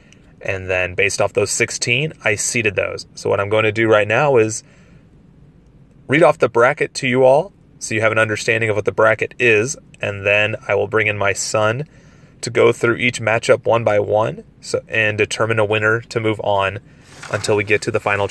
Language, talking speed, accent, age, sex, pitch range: English, 215 wpm, American, 30-49, male, 110-150 Hz